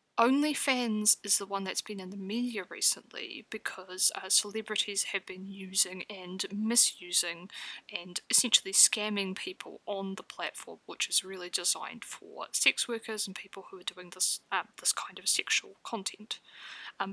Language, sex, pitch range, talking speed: English, female, 195-260 Hz, 160 wpm